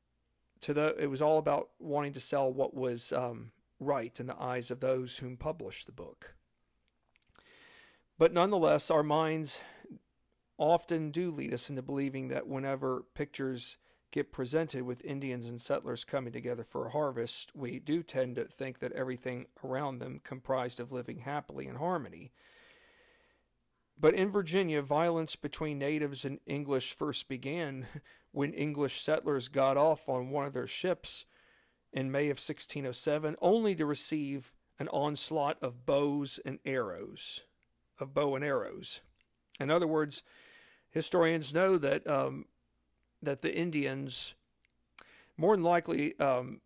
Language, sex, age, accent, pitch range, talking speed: English, male, 40-59, American, 130-155 Hz, 140 wpm